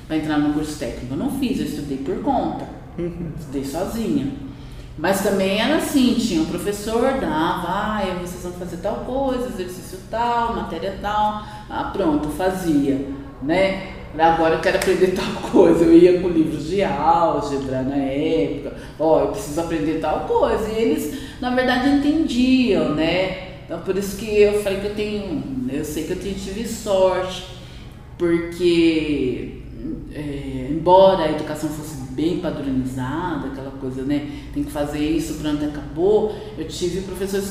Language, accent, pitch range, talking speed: Portuguese, Brazilian, 150-225 Hz, 160 wpm